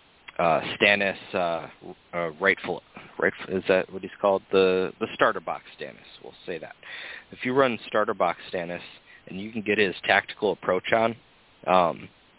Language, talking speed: English, 165 wpm